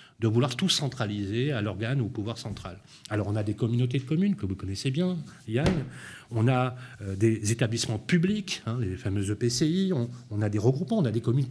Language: French